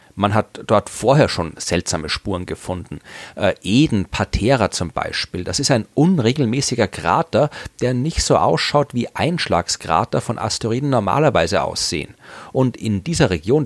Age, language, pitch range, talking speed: 40-59, German, 90-125 Hz, 135 wpm